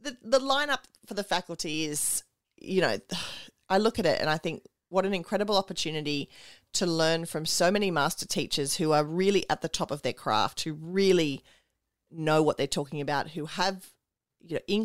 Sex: female